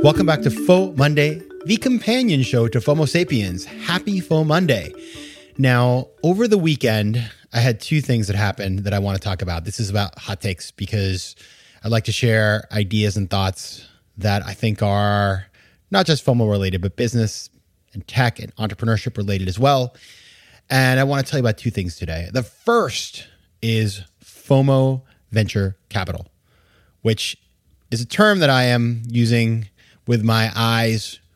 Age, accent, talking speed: 30-49, American, 165 wpm